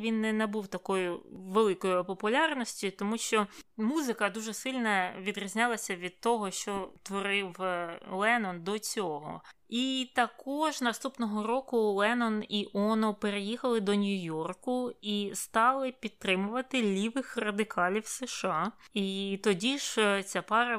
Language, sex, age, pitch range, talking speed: Ukrainian, female, 20-39, 195-235 Hz, 120 wpm